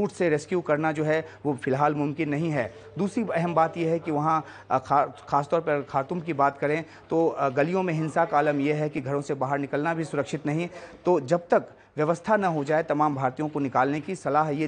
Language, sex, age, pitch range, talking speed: Hindi, male, 30-49, 140-170 Hz, 215 wpm